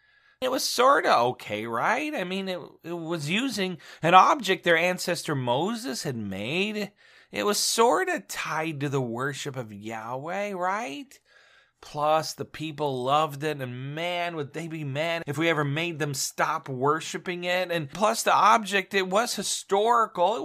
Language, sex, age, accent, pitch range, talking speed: English, male, 40-59, American, 130-195 Hz, 165 wpm